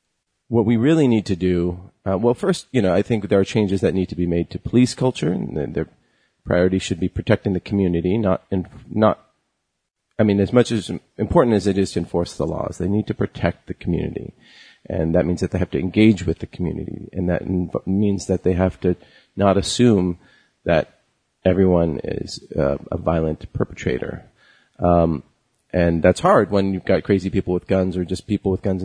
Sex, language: male, English